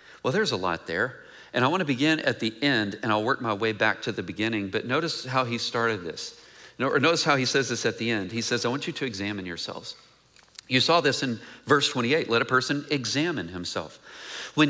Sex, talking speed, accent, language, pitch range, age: male, 235 wpm, American, English, 110-150 Hz, 40-59